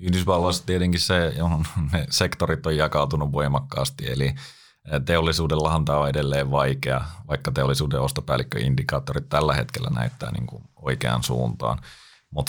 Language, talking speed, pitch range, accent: Finnish, 125 wpm, 65-80 Hz, native